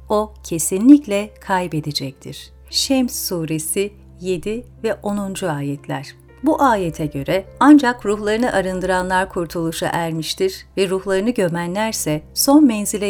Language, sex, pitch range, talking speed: Turkish, female, 165-240 Hz, 100 wpm